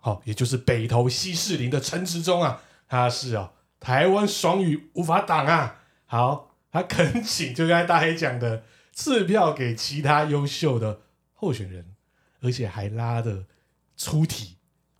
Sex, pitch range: male, 120-165 Hz